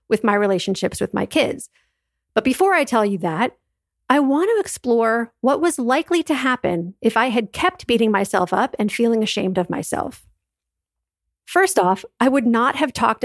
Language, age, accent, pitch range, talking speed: English, 40-59, American, 195-255 Hz, 180 wpm